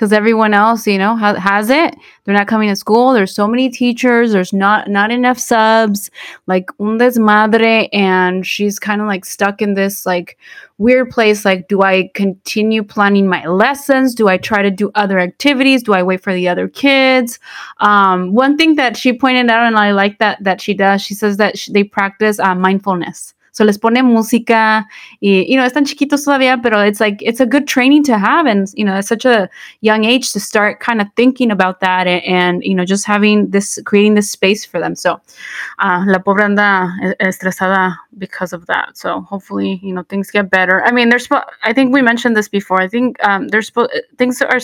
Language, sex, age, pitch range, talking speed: English, female, 20-39, 195-240 Hz, 205 wpm